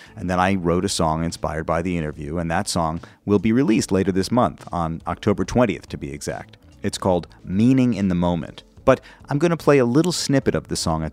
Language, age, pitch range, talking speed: English, 40-59, 80-105 Hz, 230 wpm